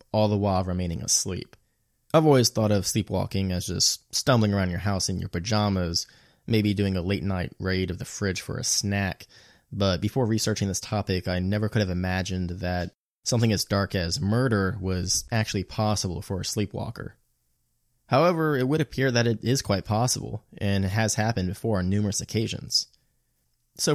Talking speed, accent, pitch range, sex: 175 wpm, American, 95-115 Hz, male